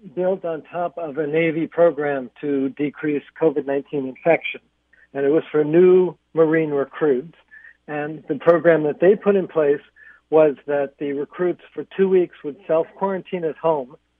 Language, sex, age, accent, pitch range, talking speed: English, male, 60-79, American, 145-180 Hz, 155 wpm